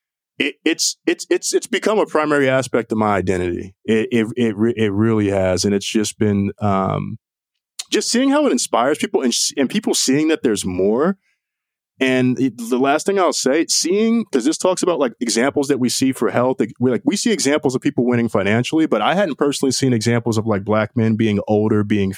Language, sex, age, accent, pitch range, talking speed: English, male, 20-39, American, 110-175 Hz, 210 wpm